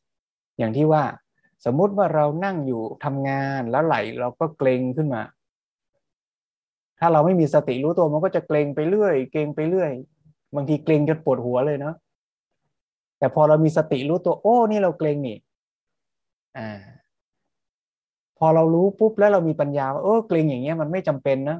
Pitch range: 140-165 Hz